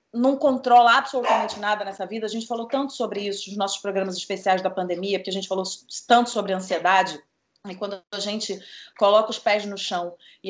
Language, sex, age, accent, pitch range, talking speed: Portuguese, female, 30-49, Brazilian, 205-285 Hz, 200 wpm